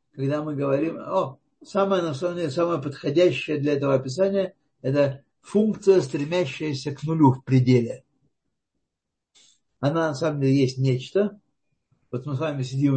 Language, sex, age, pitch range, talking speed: Russian, male, 60-79, 135-170 Hz, 145 wpm